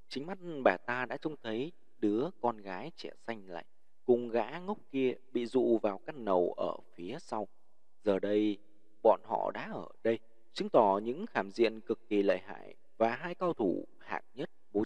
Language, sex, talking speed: Vietnamese, male, 195 wpm